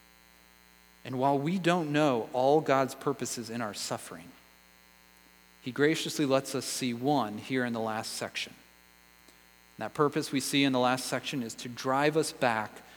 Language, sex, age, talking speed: English, male, 40-59, 160 wpm